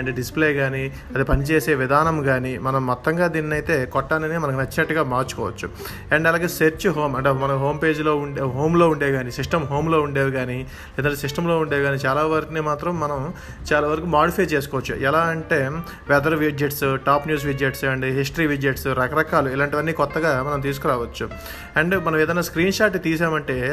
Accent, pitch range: native, 140-165 Hz